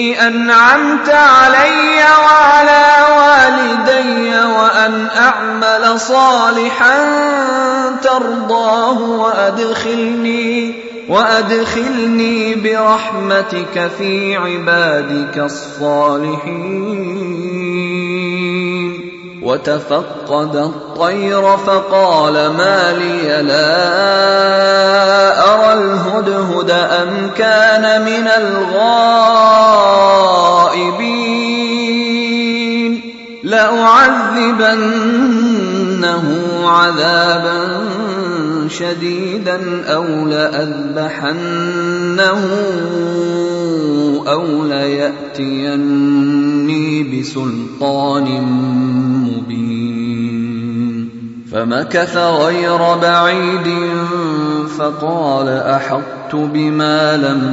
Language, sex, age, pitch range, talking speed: Arabic, male, 30-49, 150-225 Hz, 45 wpm